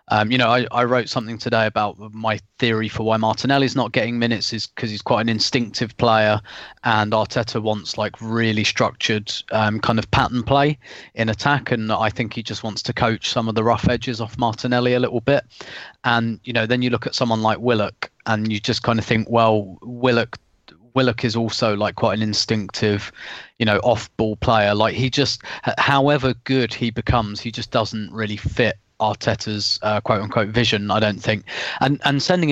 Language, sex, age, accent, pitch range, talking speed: English, male, 20-39, British, 110-125 Hz, 195 wpm